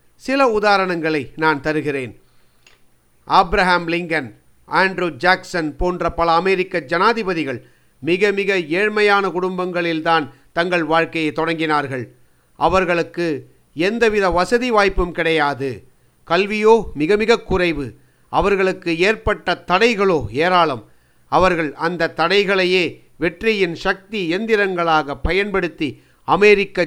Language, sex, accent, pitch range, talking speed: Tamil, male, native, 155-190 Hz, 90 wpm